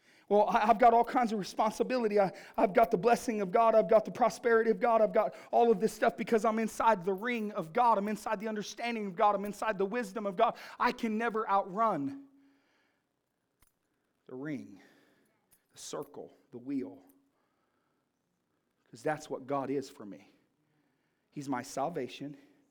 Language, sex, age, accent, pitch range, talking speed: English, male, 40-59, American, 195-240 Hz, 170 wpm